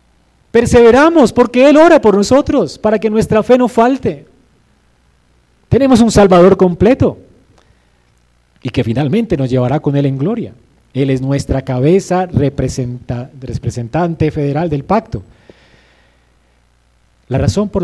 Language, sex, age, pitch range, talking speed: Spanish, male, 30-49, 120-195 Hz, 120 wpm